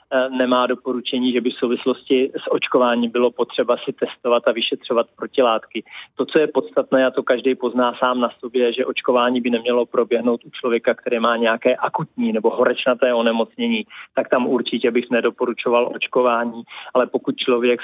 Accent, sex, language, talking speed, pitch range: native, male, Czech, 165 wpm, 115-130 Hz